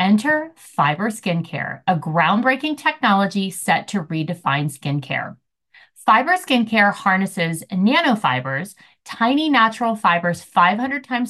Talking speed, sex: 100 wpm, female